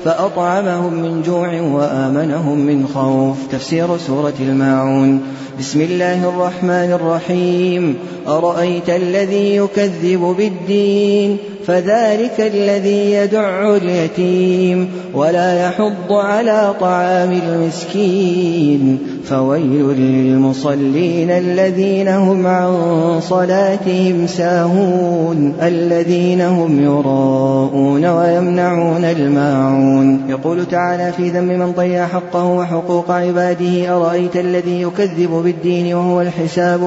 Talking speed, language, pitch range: 85 wpm, Arabic, 165-180 Hz